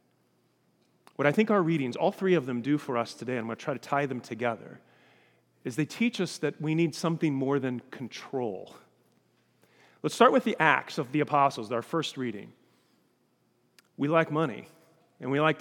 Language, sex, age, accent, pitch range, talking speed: English, male, 40-59, American, 150-215 Hz, 190 wpm